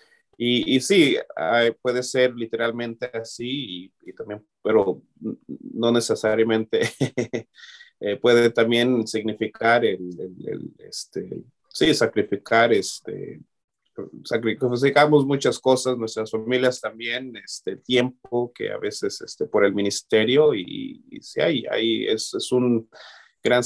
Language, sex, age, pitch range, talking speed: English, male, 30-49, 110-135 Hz, 115 wpm